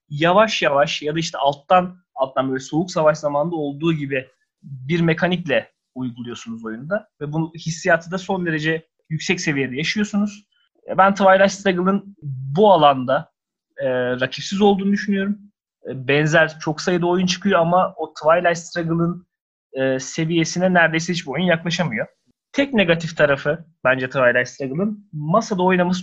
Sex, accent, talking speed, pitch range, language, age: male, native, 135 wpm, 150-190 Hz, Turkish, 30-49